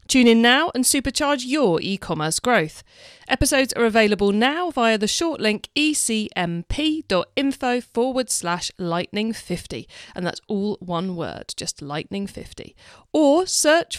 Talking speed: 135 wpm